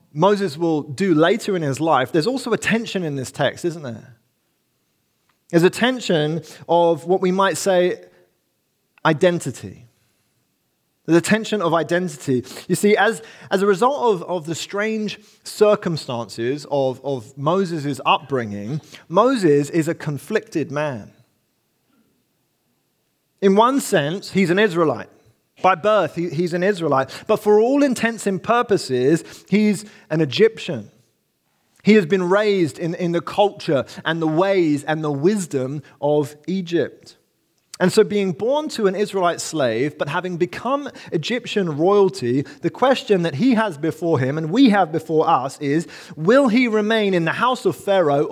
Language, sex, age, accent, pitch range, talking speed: English, male, 30-49, British, 145-205 Hz, 150 wpm